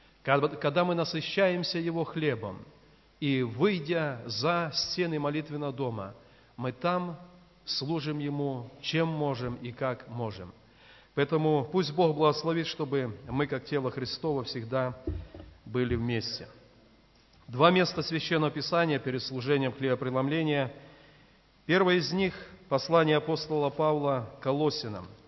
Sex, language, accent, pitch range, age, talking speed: male, Russian, native, 130-165 Hz, 40-59, 115 wpm